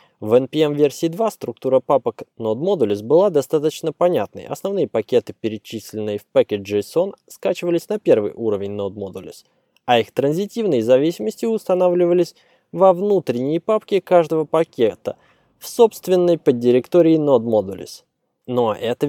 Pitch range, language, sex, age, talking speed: 115-170 Hz, Russian, male, 20-39, 115 wpm